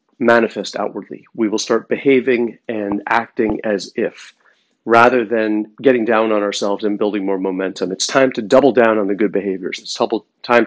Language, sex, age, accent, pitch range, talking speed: English, male, 40-59, American, 105-125 Hz, 175 wpm